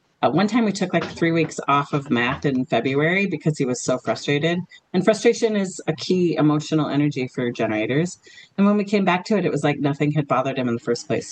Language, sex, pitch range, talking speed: English, female, 145-195 Hz, 240 wpm